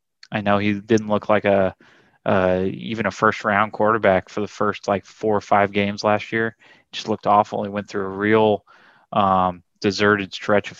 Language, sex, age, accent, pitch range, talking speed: English, male, 20-39, American, 100-115 Hz, 200 wpm